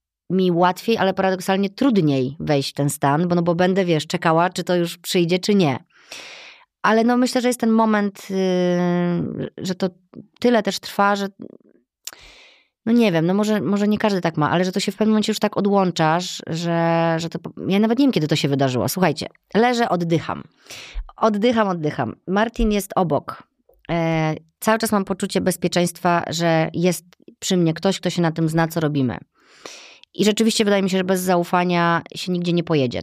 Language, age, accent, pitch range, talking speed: Polish, 30-49, native, 170-215 Hz, 190 wpm